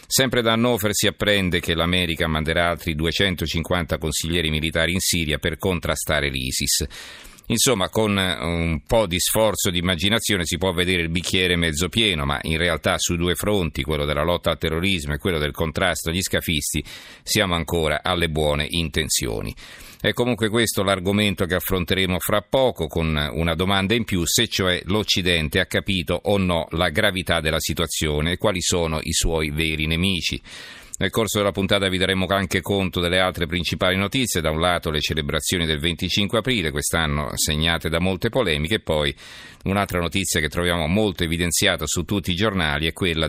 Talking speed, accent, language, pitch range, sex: 170 wpm, native, Italian, 80-100 Hz, male